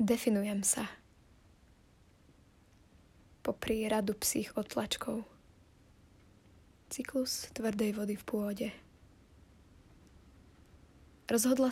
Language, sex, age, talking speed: Slovak, female, 20-39, 60 wpm